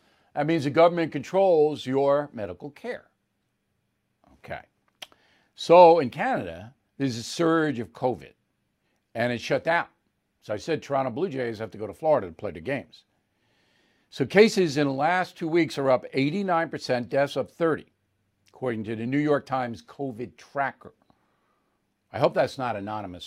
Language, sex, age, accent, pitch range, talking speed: English, male, 60-79, American, 120-175 Hz, 160 wpm